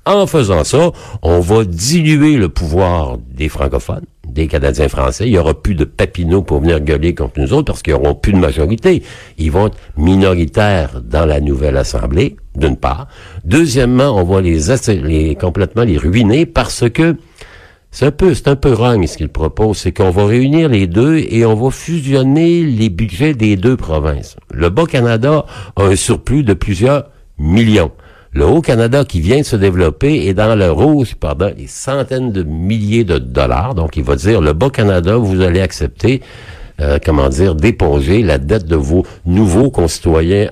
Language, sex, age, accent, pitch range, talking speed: French, male, 60-79, French, 80-115 Hz, 175 wpm